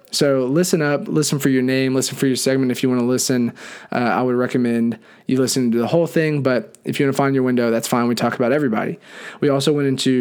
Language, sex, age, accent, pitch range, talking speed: English, male, 20-39, American, 125-150 Hz, 260 wpm